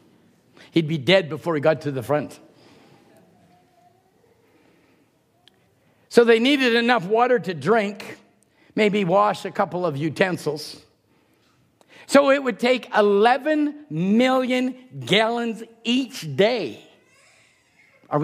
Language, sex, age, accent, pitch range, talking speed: English, male, 50-69, American, 190-275 Hz, 105 wpm